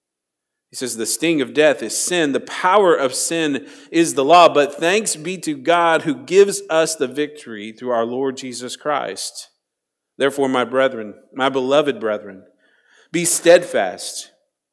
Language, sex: English, male